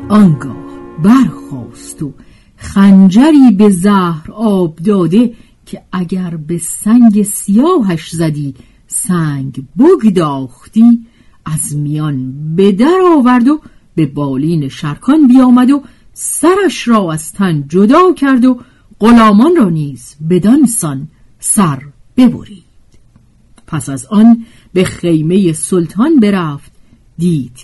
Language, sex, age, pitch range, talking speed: Persian, female, 50-69, 145-230 Hz, 105 wpm